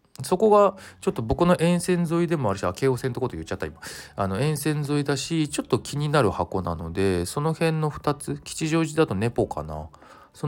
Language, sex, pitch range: Japanese, male, 90-135 Hz